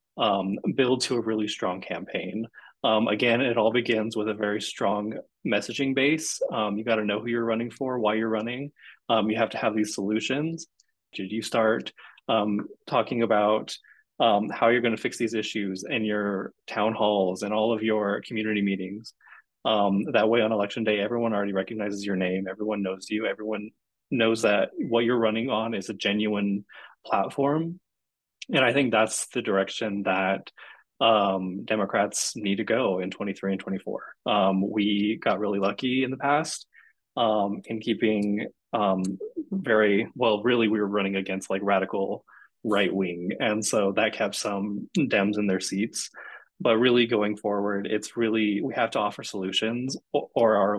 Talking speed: 170 wpm